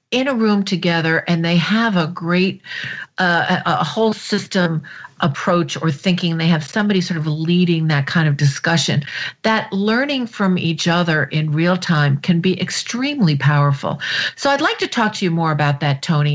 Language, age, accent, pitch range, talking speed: English, 50-69, American, 160-195 Hz, 180 wpm